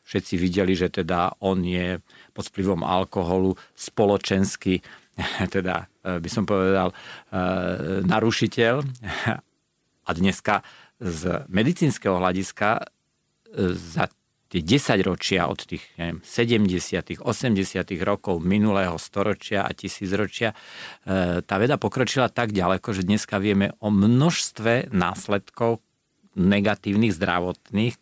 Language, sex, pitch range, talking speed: Slovak, male, 95-110 Hz, 100 wpm